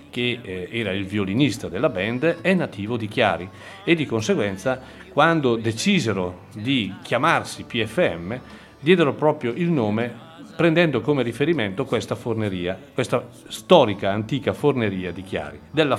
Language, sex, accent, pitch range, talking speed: Italian, male, native, 110-145 Hz, 130 wpm